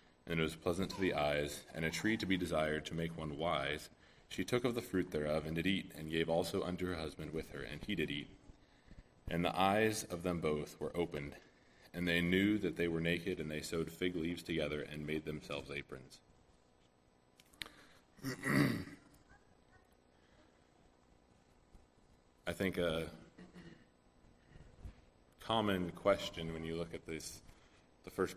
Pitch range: 75-90 Hz